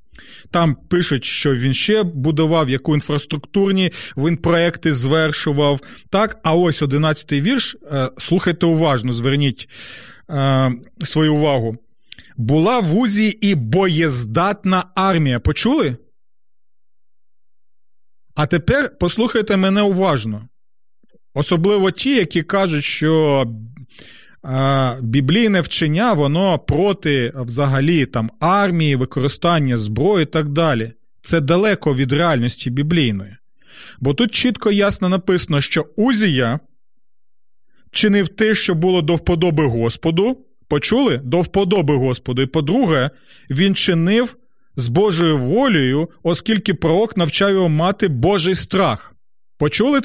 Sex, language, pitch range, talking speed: male, Ukrainian, 135-190 Hz, 110 wpm